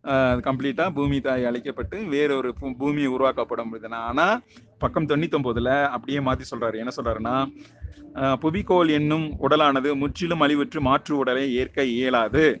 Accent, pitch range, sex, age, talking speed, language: native, 125-150 Hz, male, 30-49, 130 wpm, Tamil